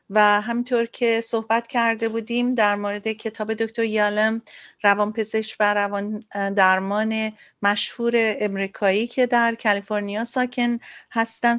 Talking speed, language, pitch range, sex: 115 wpm, Persian, 210-240 Hz, female